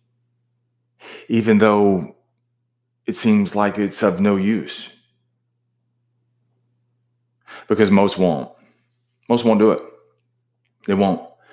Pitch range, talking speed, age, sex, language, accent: 105-120 Hz, 95 wpm, 40-59, male, English, American